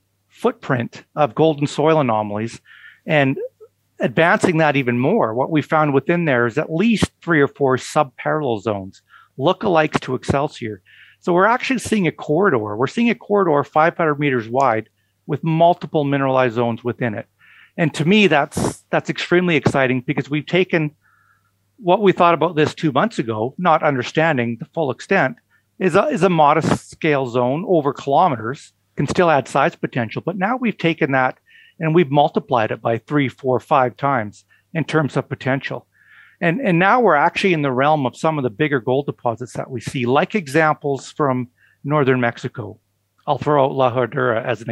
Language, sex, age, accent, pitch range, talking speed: English, male, 40-59, American, 125-160 Hz, 175 wpm